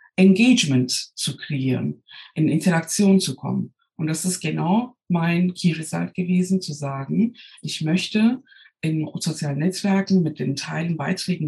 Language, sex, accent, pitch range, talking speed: German, female, German, 150-190 Hz, 135 wpm